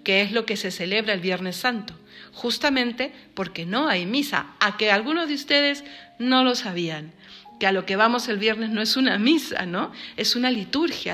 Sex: female